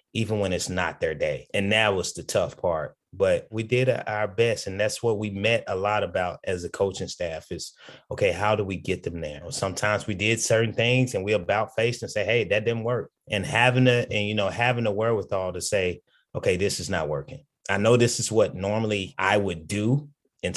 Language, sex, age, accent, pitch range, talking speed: English, male, 30-49, American, 95-115 Hz, 230 wpm